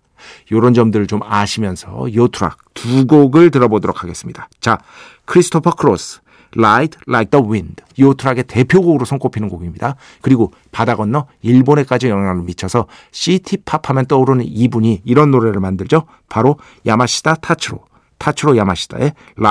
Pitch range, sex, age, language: 110-145 Hz, male, 50-69, Korean